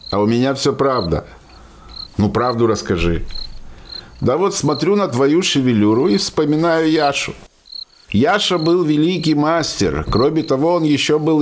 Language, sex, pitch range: Russian, male, 130-170 Hz